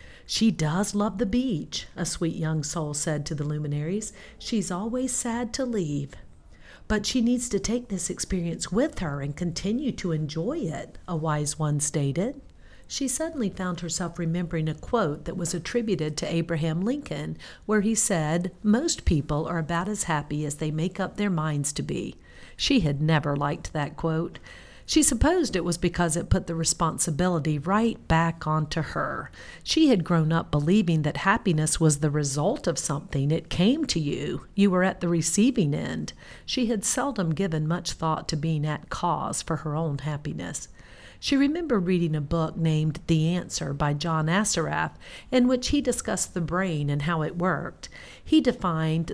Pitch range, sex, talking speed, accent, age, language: 155-210 Hz, female, 175 wpm, American, 50-69, English